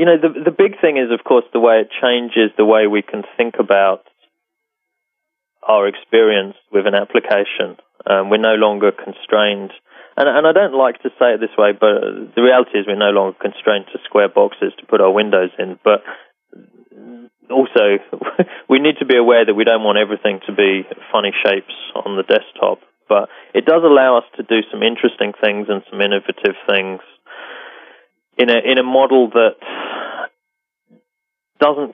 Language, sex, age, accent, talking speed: English, male, 20-39, British, 180 wpm